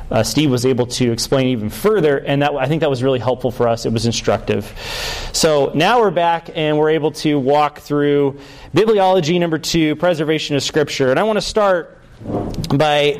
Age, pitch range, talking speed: 30-49, 135-175 Hz, 190 wpm